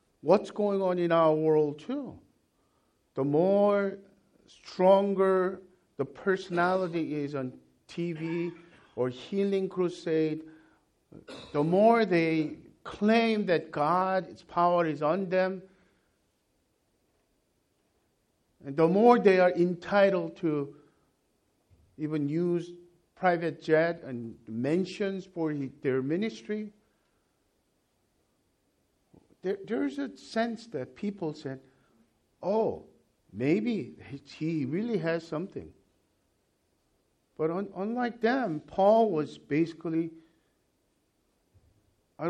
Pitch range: 145-195 Hz